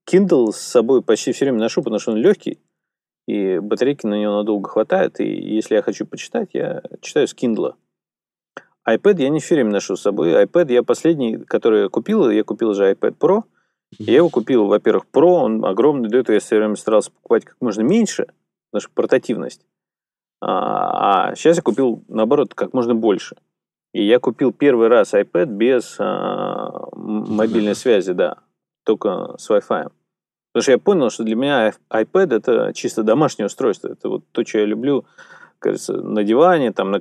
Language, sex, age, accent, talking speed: Russian, male, 30-49, native, 180 wpm